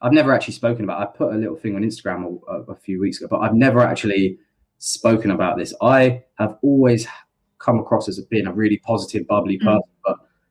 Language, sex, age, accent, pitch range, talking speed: English, male, 20-39, British, 100-115 Hz, 215 wpm